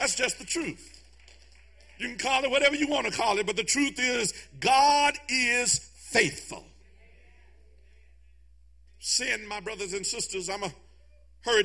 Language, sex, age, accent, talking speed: English, male, 50-69, American, 155 wpm